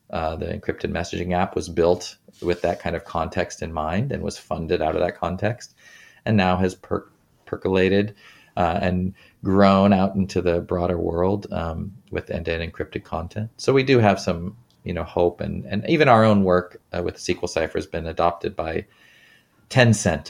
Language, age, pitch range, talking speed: English, 30-49, 90-105 Hz, 185 wpm